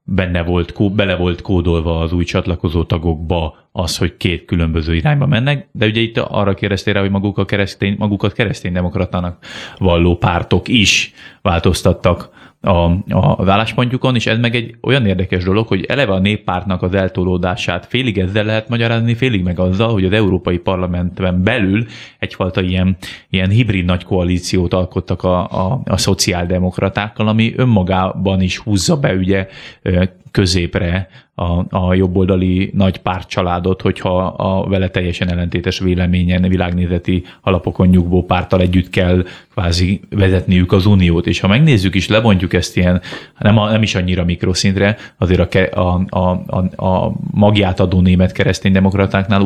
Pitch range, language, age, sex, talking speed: 90-105 Hz, Hungarian, 30-49, male, 145 wpm